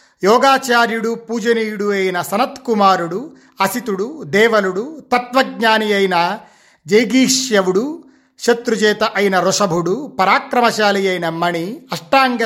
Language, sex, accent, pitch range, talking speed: Telugu, male, native, 175-225 Hz, 75 wpm